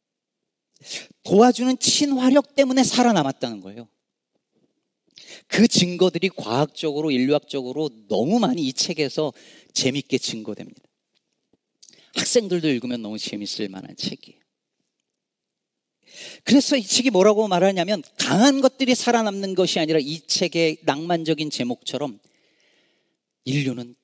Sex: male